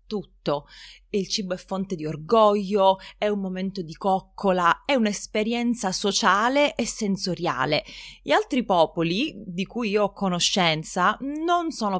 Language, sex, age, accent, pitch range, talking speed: Italian, female, 20-39, native, 180-230 Hz, 130 wpm